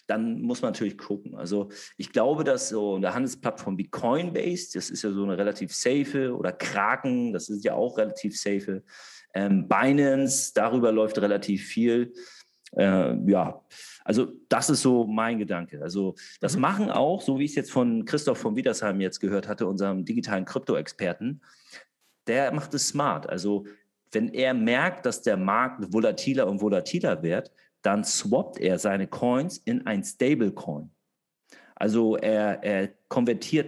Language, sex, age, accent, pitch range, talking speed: German, male, 40-59, German, 100-155 Hz, 160 wpm